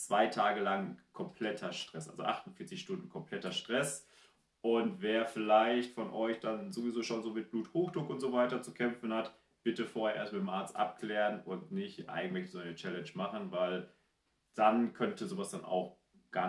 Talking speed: 175 wpm